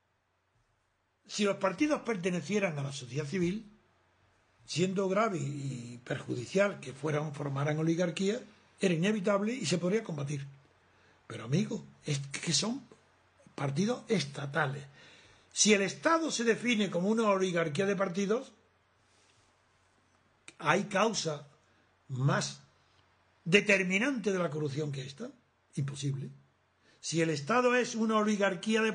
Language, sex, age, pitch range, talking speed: Spanish, male, 60-79, 145-220 Hz, 115 wpm